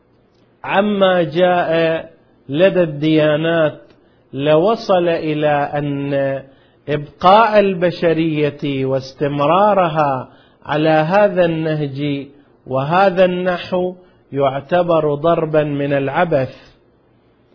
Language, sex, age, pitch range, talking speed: Arabic, male, 50-69, 145-180 Hz, 65 wpm